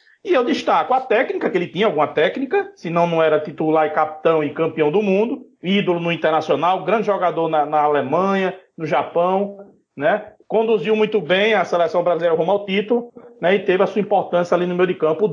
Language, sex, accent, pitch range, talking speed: Portuguese, male, Brazilian, 170-225 Hz, 210 wpm